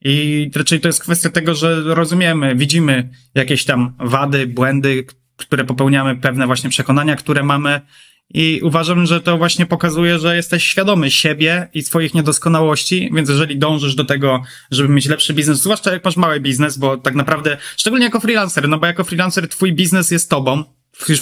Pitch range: 135-165 Hz